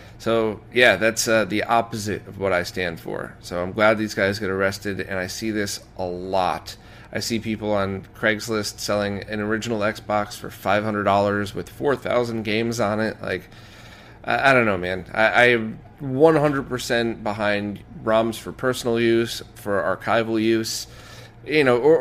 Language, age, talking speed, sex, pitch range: English, 30-49, 165 wpm, male, 105-125 Hz